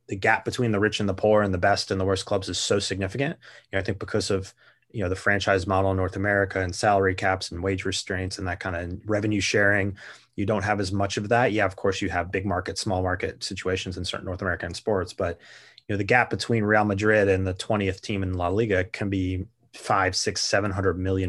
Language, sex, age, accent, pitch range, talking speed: English, male, 20-39, American, 95-105 Hz, 250 wpm